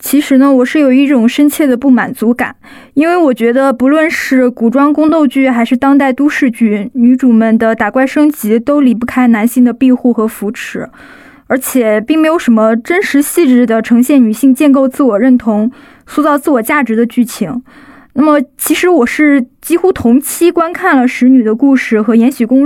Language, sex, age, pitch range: Chinese, female, 20-39, 235-290 Hz